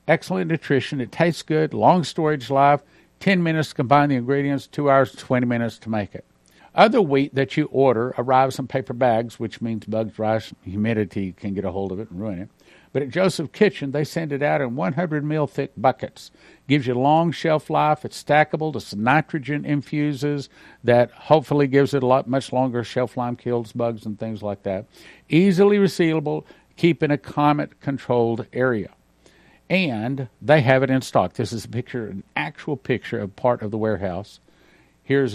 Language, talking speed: English, 185 wpm